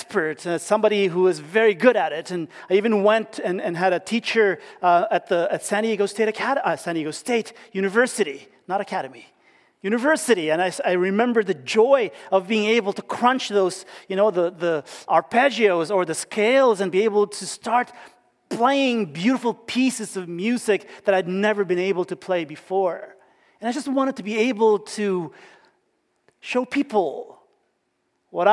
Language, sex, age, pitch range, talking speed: English, male, 40-59, 180-235 Hz, 175 wpm